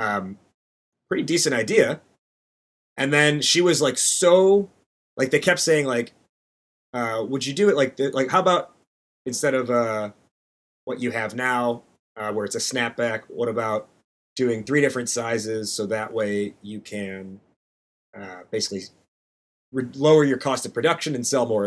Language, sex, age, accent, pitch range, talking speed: English, male, 30-49, American, 105-140 Hz, 160 wpm